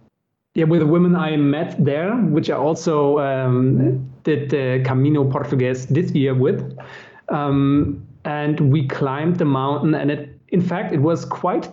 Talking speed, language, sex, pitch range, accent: 155 wpm, English, male, 135-165 Hz, German